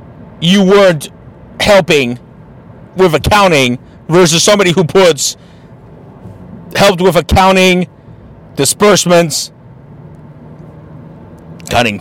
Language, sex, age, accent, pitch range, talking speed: English, male, 40-59, American, 145-200 Hz, 70 wpm